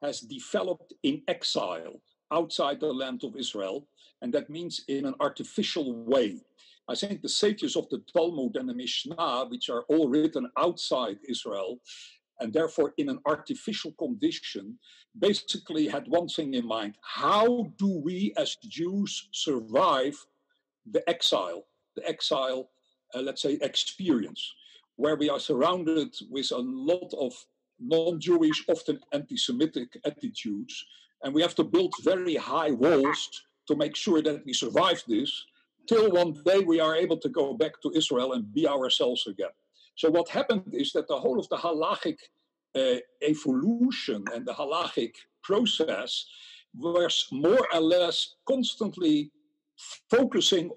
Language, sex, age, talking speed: English, male, 50-69, 145 wpm